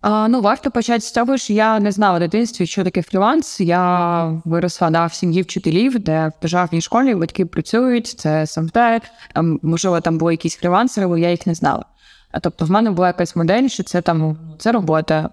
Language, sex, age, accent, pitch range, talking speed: Ukrainian, female, 20-39, native, 165-210 Hz, 205 wpm